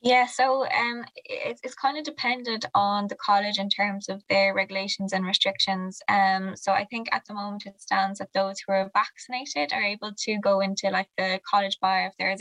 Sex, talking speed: female, 215 wpm